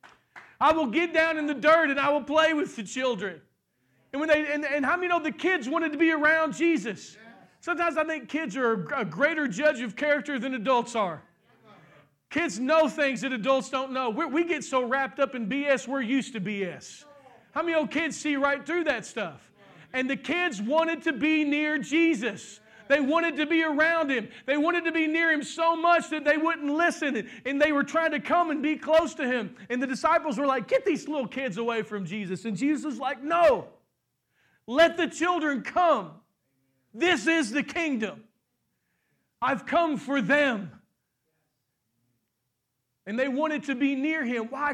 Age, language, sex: 40-59, English, male